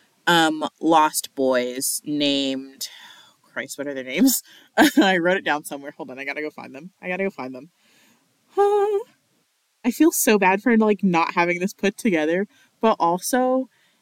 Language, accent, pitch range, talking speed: English, American, 150-225 Hz, 165 wpm